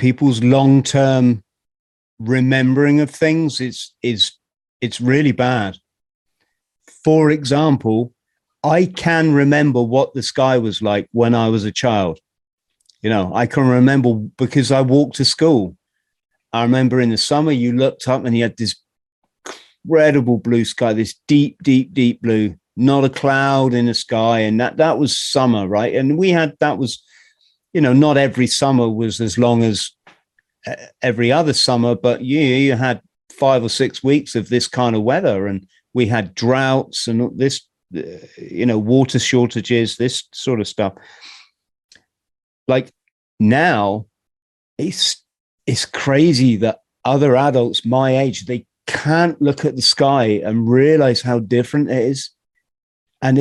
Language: English